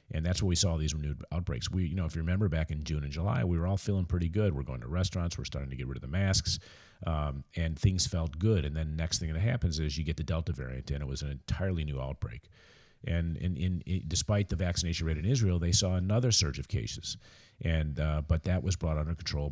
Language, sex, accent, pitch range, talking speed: English, male, American, 75-95 Hz, 265 wpm